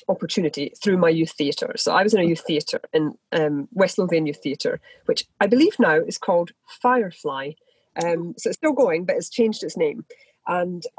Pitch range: 160-240 Hz